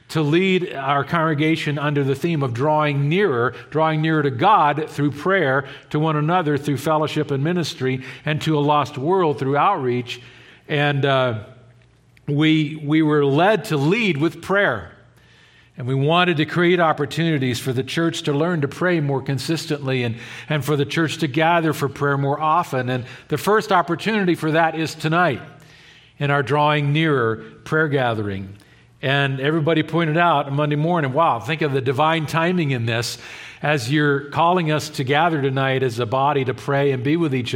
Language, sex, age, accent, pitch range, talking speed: English, male, 50-69, American, 130-160 Hz, 175 wpm